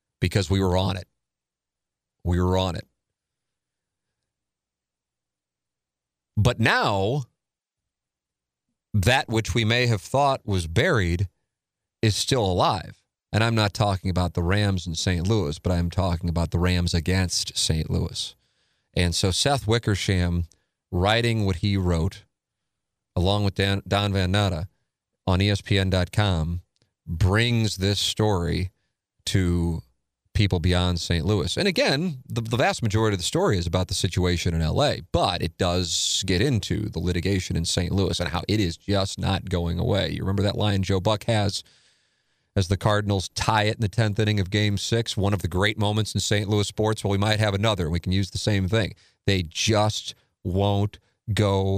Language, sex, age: English, male, 40-59